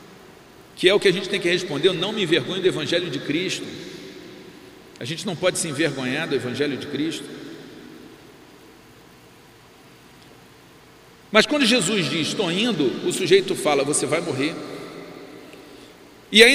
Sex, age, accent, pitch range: male, 50-69, Brazilian, 195-255 Hz